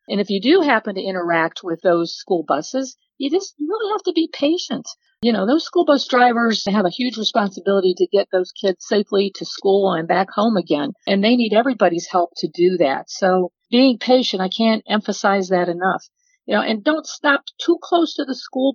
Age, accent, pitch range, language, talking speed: 50-69, American, 175-230 Hz, English, 210 wpm